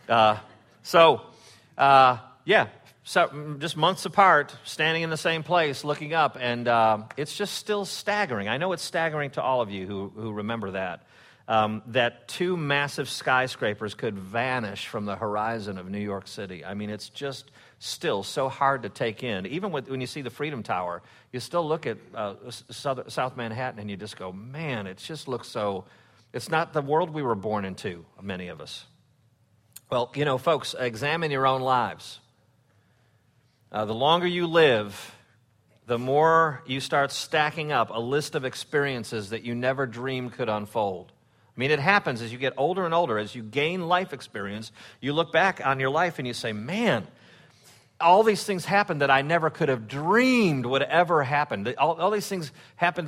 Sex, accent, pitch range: male, American, 115-160 Hz